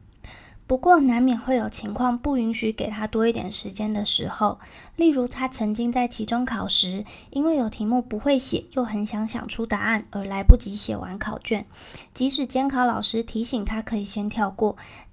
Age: 20-39